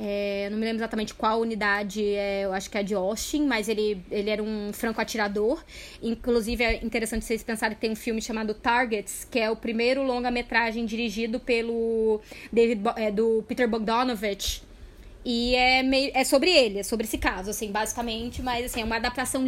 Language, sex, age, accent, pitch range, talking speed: Portuguese, female, 20-39, Brazilian, 215-250 Hz, 190 wpm